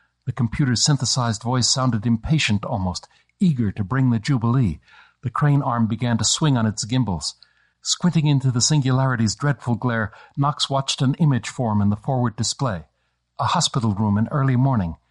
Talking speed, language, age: 165 wpm, English, 60-79